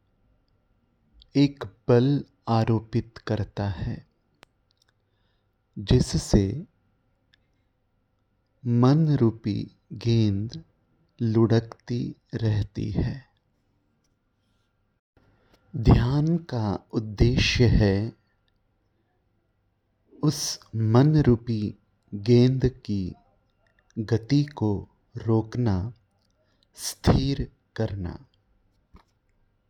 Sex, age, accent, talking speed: male, 30-49, native, 50 wpm